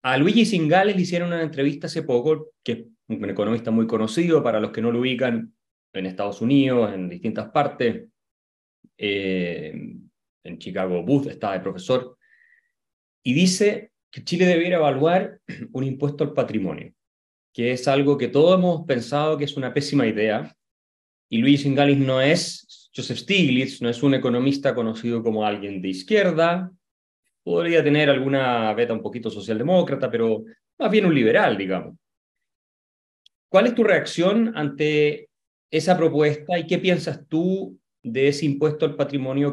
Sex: male